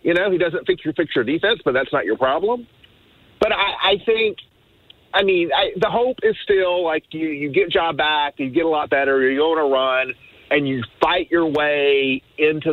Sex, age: male, 40-59